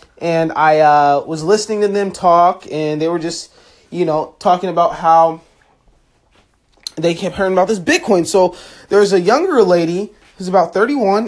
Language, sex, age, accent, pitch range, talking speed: English, male, 20-39, American, 165-230 Hz, 170 wpm